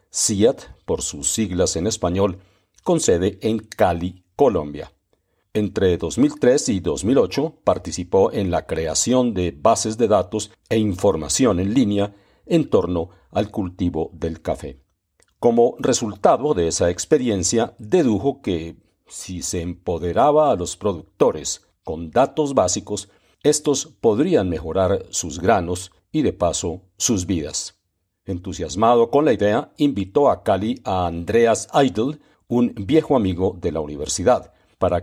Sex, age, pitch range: male, 50-69, 90-110 Hz